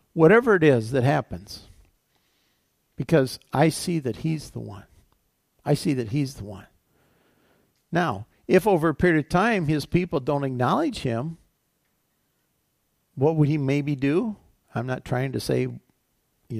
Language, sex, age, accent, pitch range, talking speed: English, male, 50-69, American, 140-195 Hz, 150 wpm